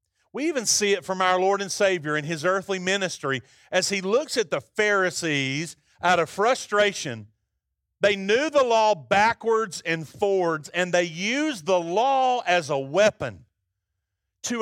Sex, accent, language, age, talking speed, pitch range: male, American, English, 40-59, 155 wpm, 120-200 Hz